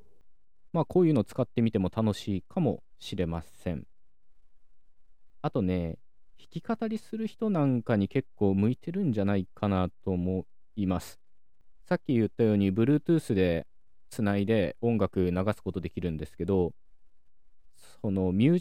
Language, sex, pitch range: Japanese, male, 90-125 Hz